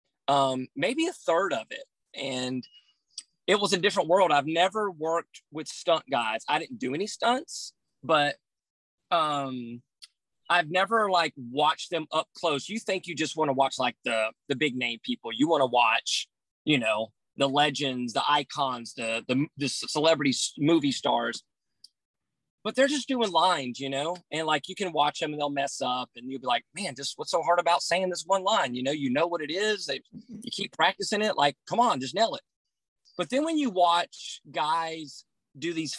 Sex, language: male, English